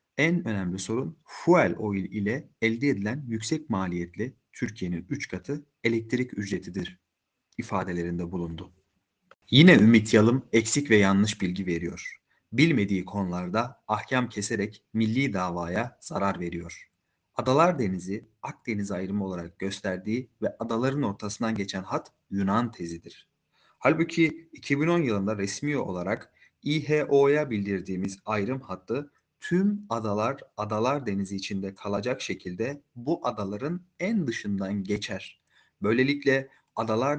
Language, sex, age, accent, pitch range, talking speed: Turkish, male, 40-59, native, 100-140 Hz, 110 wpm